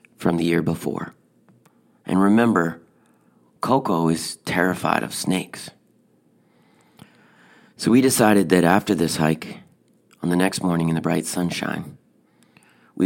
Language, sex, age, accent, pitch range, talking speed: English, male, 40-59, American, 85-105 Hz, 125 wpm